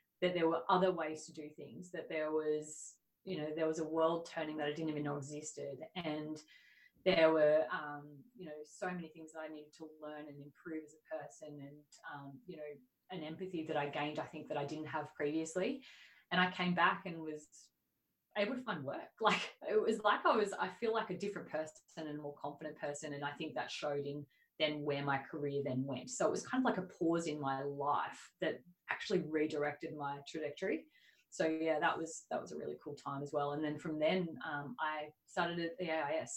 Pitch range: 145-170 Hz